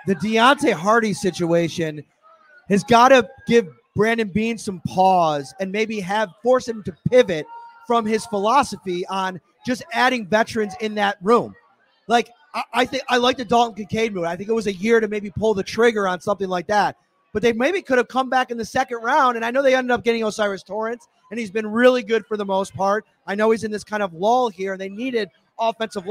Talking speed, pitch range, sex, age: 220 wpm, 205-250 Hz, male, 30-49